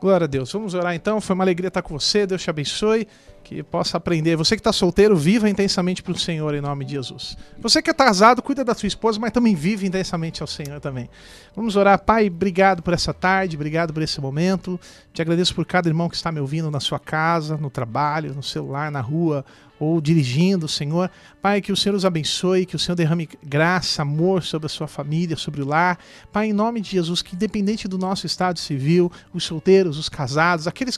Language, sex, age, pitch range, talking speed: Portuguese, male, 40-59, 160-220 Hz, 220 wpm